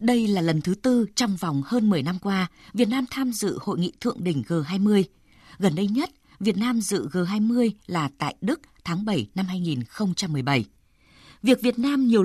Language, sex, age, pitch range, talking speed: Vietnamese, female, 20-39, 170-230 Hz, 185 wpm